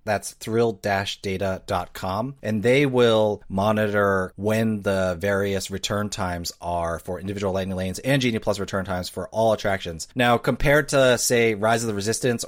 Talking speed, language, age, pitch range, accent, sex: 155 wpm, English, 30-49, 95-115 Hz, American, male